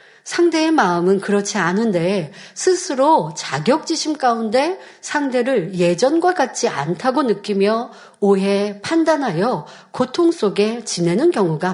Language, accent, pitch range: Korean, native, 195-280 Hz